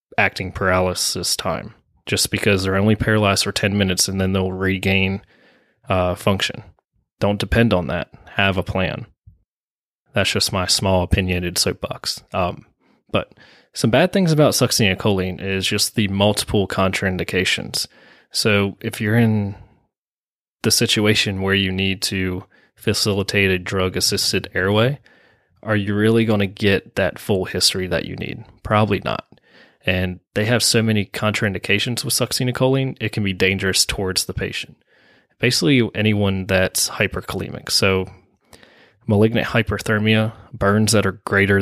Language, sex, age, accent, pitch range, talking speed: English, male, 20-39, American, 95-110 Hz, 140 wpm